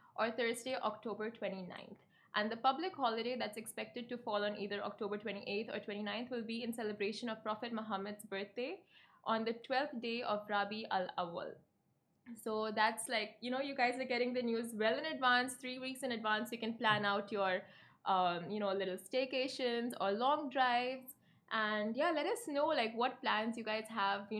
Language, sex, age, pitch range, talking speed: Arabic, female, 20-39, 210-250 Hz, 190 wpm